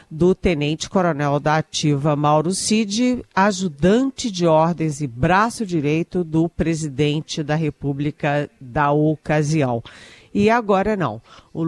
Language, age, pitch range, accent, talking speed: Portuguese, 50-69, 150-185 Hz, Brazilian, 115 wpm